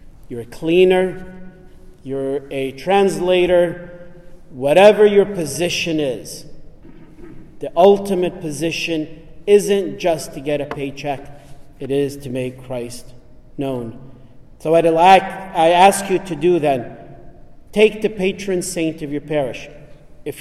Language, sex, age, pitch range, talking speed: English, male, 40-59, 145-185 Hz, 125 wpm